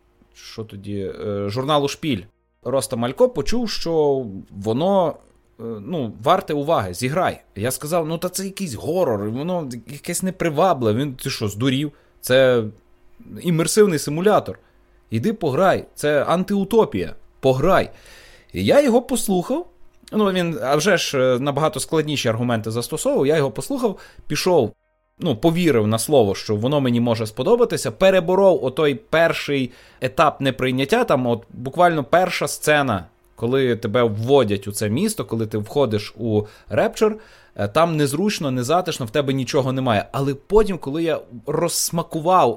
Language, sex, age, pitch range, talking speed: Ukrainian, male, 30-49, 115-170 Hz, 130 wpm